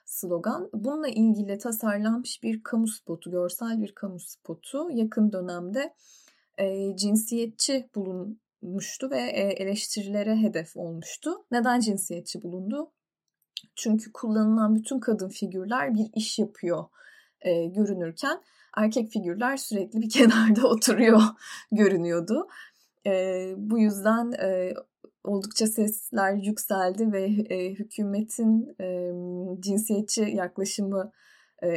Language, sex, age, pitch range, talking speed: Turkish, female, 20-39, 190-225 Hz, 105 wpm